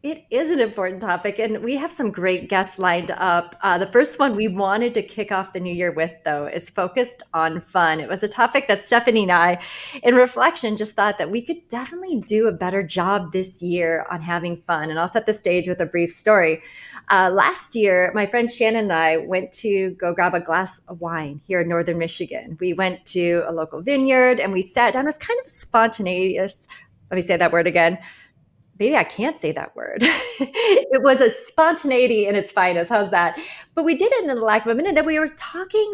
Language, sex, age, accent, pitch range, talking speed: English, female, 30-49, American, 180-235 Hz, 225 wpm